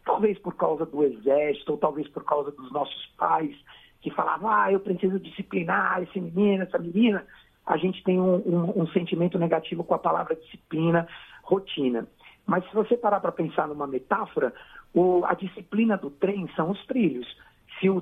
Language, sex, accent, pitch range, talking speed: Portuguese, male, Brazilian, 155-205 Hz, 175 wpm